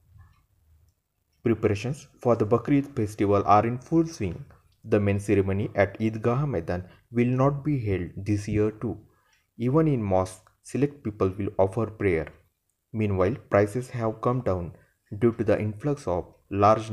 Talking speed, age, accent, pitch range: 150 wpm, 30-49, native, 95-120 Hz